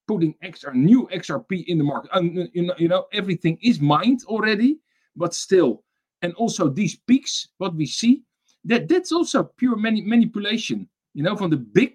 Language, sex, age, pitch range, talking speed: English, male, 50-69, 150-235 Hz, 180 wpm